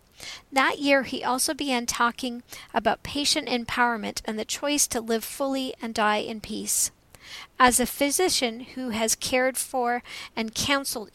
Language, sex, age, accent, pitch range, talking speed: English, female, 40-59, American, 225-260 Hz, 150 wpm